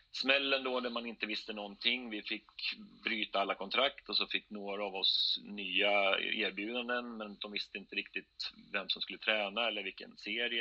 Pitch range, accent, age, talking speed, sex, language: 100-115 Hz, native, 30-49, 180 wpm, male, Swedish